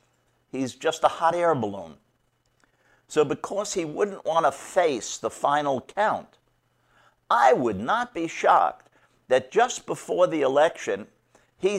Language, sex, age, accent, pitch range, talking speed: English, male, 60-79, American, 115-160 Hz, 130 wpm